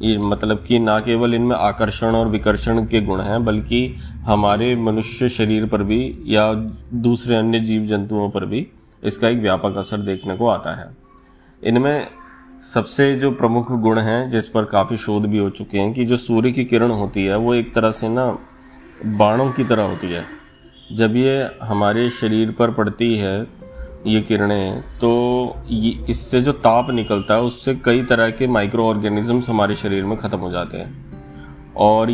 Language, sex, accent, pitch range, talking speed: Hindi, male, native, 105-120 Hz, 175 wpm